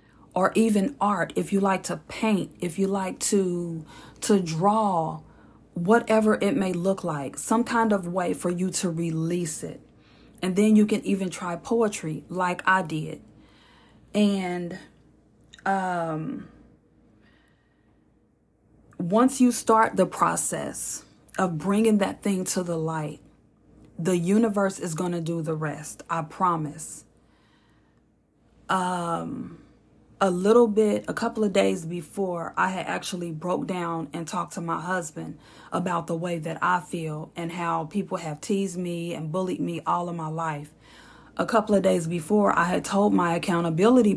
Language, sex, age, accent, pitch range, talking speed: English, female, 40-59, American, 165-195 Hz, 150 wpm